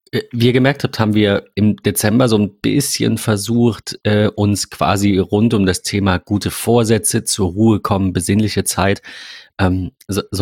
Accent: German